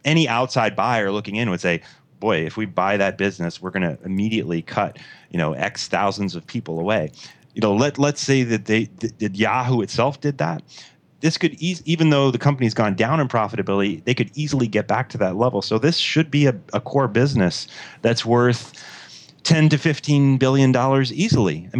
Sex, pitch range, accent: male, 105-135 Hz, American